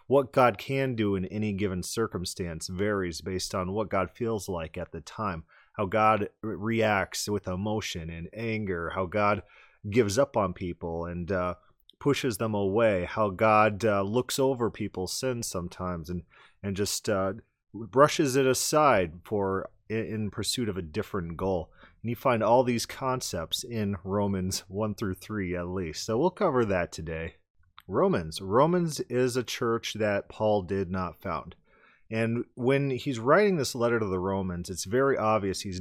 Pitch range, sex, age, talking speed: 95-125 Hz, male, 30-49, 170 wpm